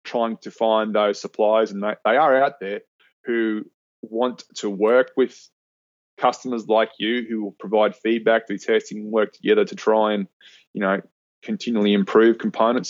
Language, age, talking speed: English, 20-39, 160 wpm